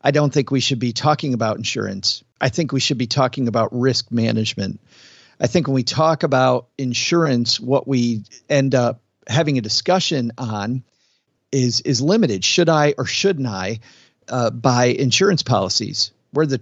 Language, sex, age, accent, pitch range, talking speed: English, male, 50-69, American, 120-145 Hz, 170 wpm